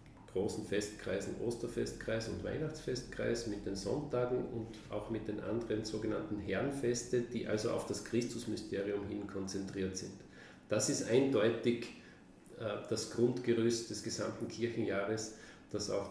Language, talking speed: German, 125 wpm